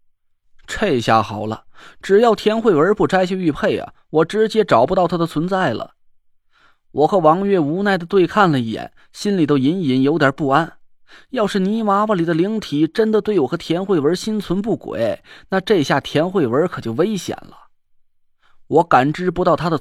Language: Chinese